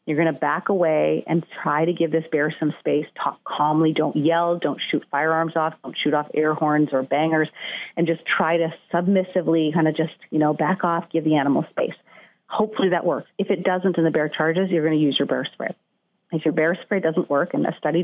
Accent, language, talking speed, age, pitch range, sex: American, English, 235 wpm, 40-59, 150-175 Hz, female